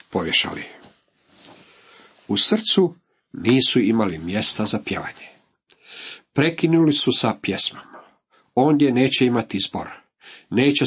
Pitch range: 105-140 Hz